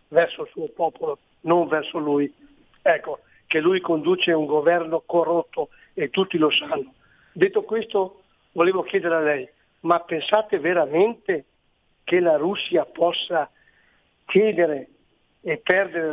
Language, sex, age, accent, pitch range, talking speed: Italian, male, 60-79, native, 165-210 Hz, 125 wpm